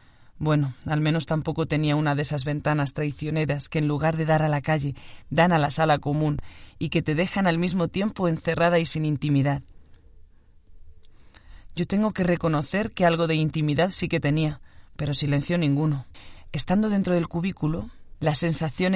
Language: Spanish